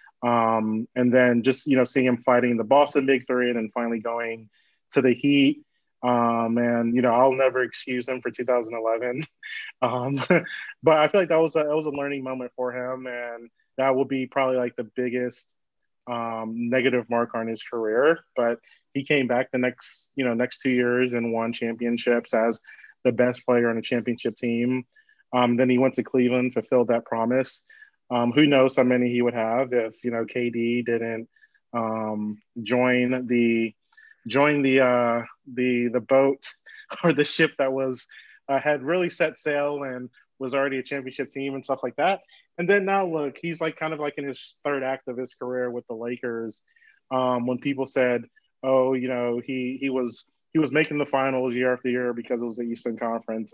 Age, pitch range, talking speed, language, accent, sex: 20-39, 120-135 Hz, 195 wpm, English, American, male